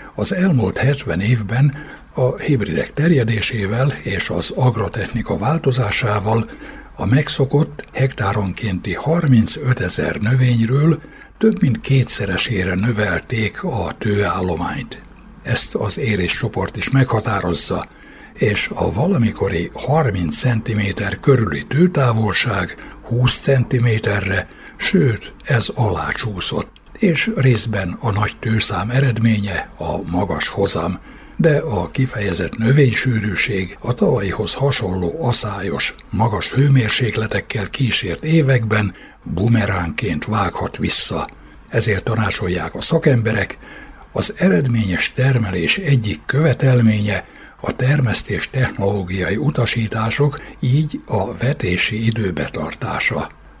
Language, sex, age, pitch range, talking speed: Hungarian, male, 60-79, 100-135 Hz, 90 wpm